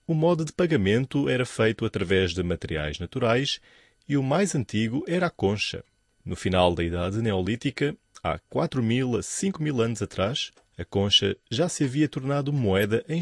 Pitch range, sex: 100-155 Hz, male